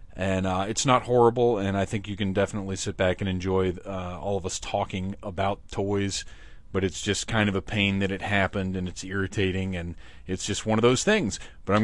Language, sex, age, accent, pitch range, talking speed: English, male, 30-49, American, 90-105 Hz, 225 wpm